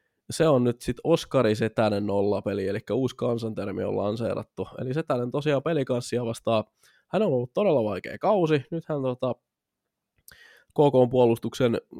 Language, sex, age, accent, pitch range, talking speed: Finnish, male, 20-39, native, 110-130 Hz, 130 wpm